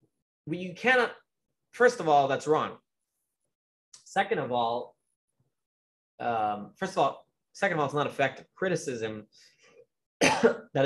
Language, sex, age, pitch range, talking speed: English, male, 20-39, 115-165 Hz, 125 wpm